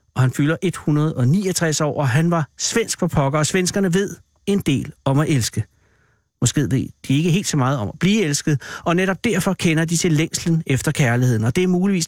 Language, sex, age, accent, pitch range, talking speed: Danish, male, 60-79, native, 125-170 Hz, 215 wpm